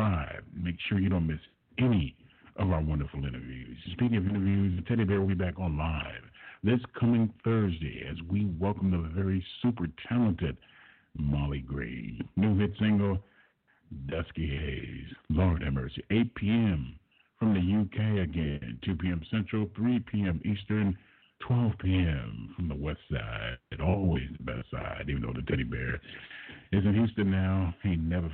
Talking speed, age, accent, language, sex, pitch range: 160 wpm, 50-69, American, English, male, 80-100 Hz